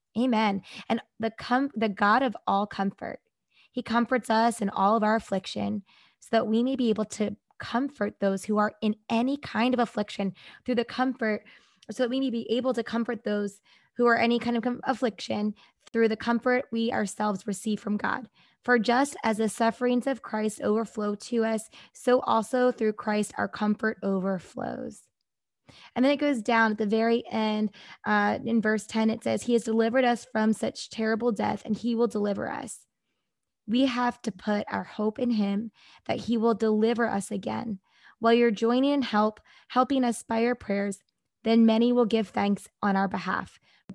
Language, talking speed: English, 190 wpm